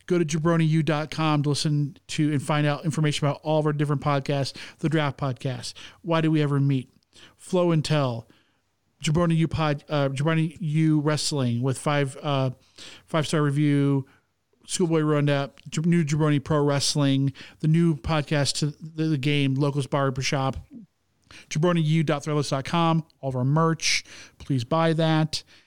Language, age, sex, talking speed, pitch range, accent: English, 40-59, male, 140 wpm, 145-170 Hz, American